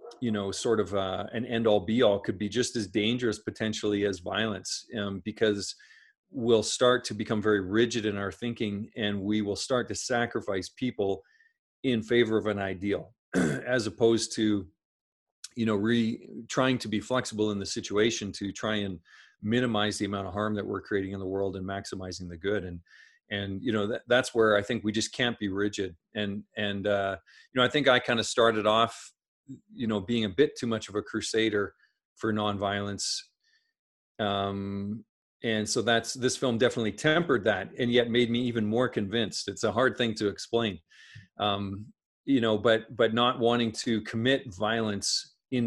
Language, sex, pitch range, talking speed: English, male, 100-120 Hz, 185 wpm